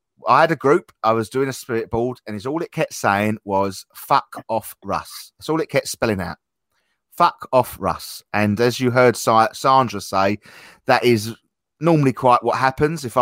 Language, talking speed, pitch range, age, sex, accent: English, 195 wpm, 100-130 Hz, 30-49, male, British